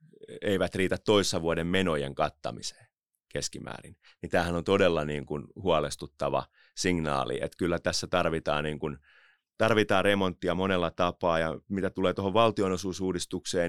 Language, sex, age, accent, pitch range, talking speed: Finnish, male, 30-49, native, 75-95 Hz, 125 wpm